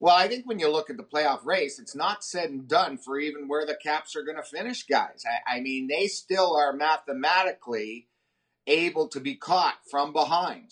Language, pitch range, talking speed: English, 140-185 Hz, 215 wpm